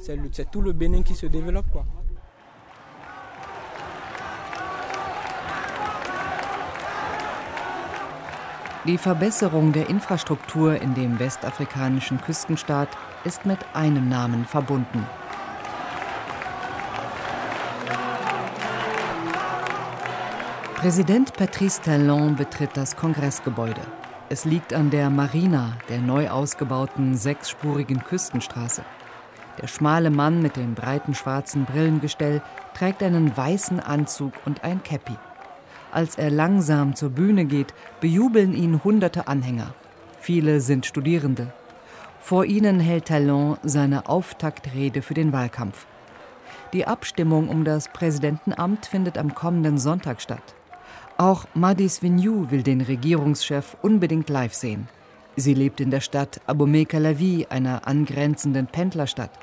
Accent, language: German, German